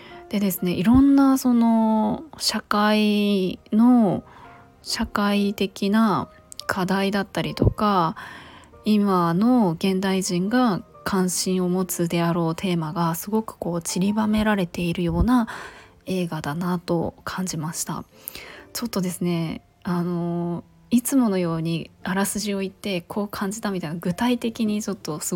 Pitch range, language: 180-230 Hz, Japanese